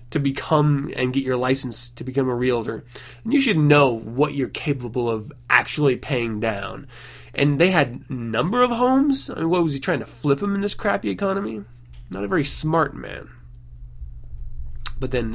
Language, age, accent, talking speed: English, 20-39, American, 185 wpm